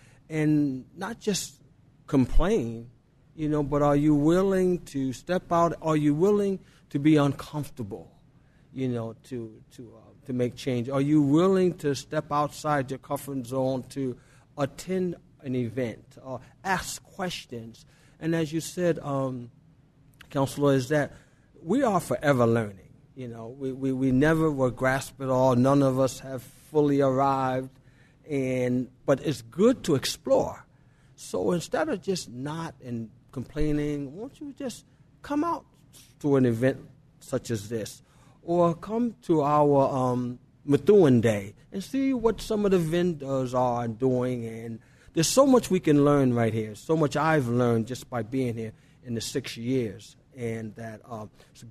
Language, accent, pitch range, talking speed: English, American, 125-150 Hz, 160 wpm